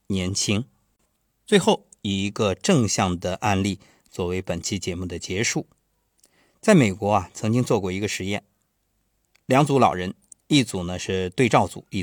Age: 50-69